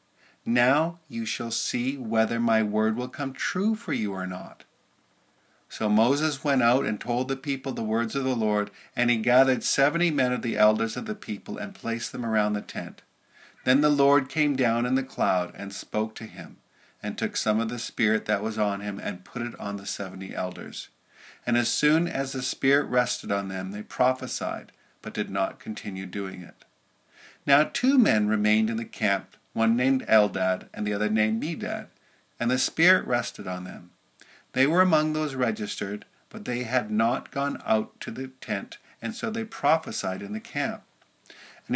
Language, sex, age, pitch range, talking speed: English, male, 50-69, 105-140 Hz, 190 wpm